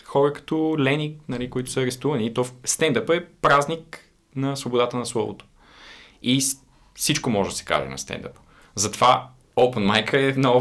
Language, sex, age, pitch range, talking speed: Bulgarian, male, 20-39, 100-140 Hz, 170 wpm